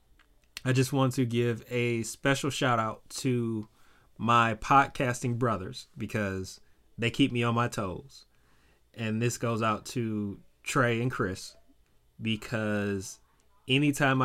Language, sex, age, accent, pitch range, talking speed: English, male, 20-39, American, 95-120 Hz, 125 wpm